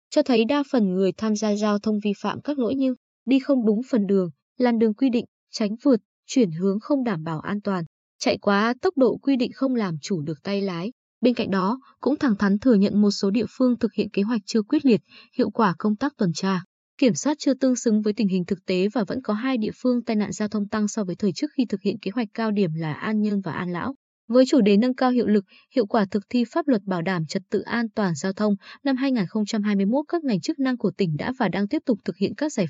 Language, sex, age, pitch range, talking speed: Vietnamese, female, 20-39, 200-250 Hz, 265 wpm